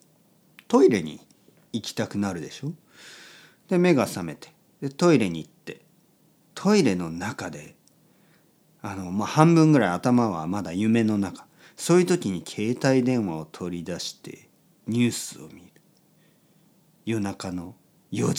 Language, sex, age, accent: Japanese, male, 40-59, native